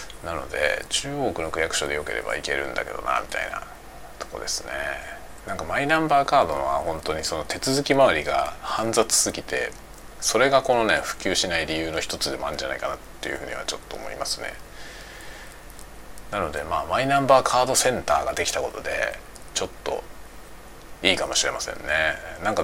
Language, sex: Japanese, male